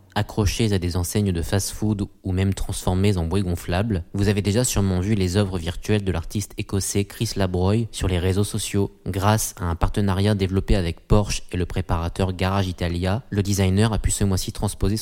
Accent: French